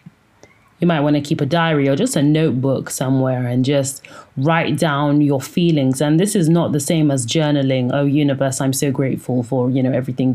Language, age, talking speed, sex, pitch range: English, 30-49, 205 wpm, female, 140-170 Hz